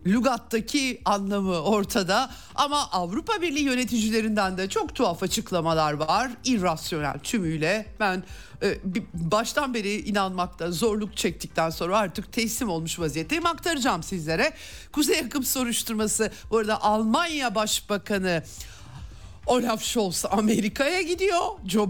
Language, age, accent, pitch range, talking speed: Turkish, 60-79, native, 185-245 Hz, 105 wpm